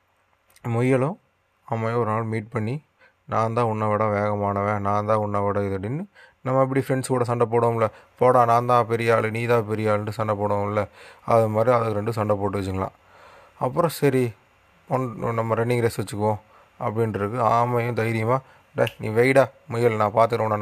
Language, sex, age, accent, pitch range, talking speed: Tamil, male, 20-39, native, 110-130 Hz, 150 wpm